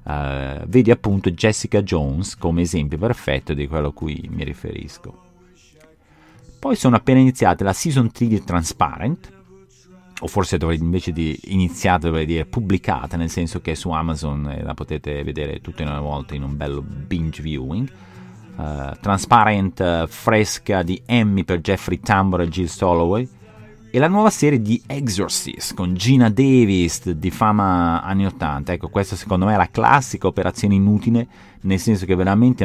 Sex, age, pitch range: male, 40-59, 80-105 Hz